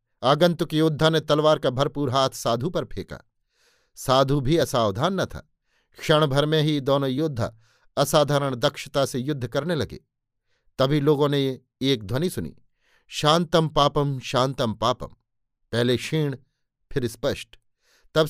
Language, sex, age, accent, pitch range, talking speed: Hindi, male, 50-69, native, 125-155 Hz, 140 wpm